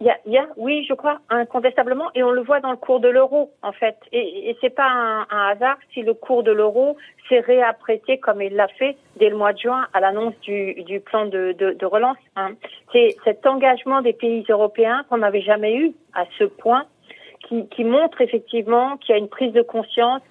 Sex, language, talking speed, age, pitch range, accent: female, French, 220 wpm, 40-59, 205-260 Hz, French